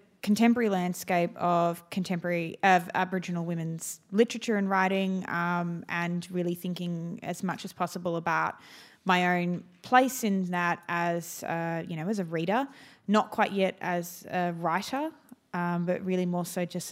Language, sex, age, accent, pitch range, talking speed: English, female, 20-39, Australian, 170-195 Hz, 155 wpm